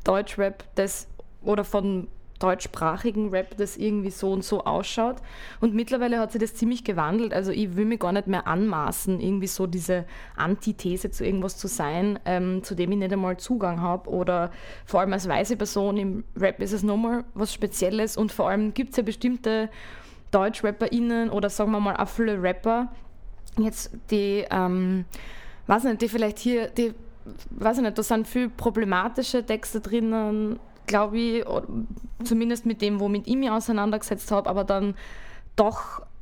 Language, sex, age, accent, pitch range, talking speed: German, female, 20-39, German, 195-225 Hz, 165 wpm